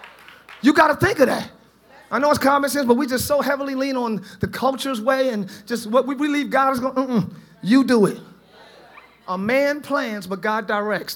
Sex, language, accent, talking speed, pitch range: male, English, American, 215 wpm, 210-275 Hz